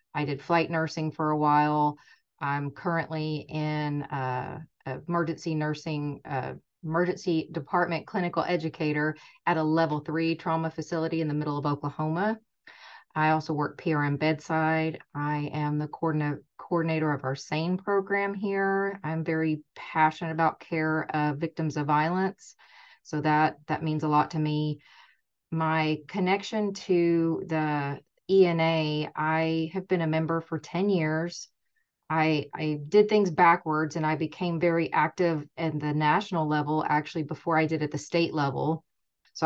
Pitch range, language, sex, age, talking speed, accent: 150-165 Hz, English, female, 30-49, 145 wpm, American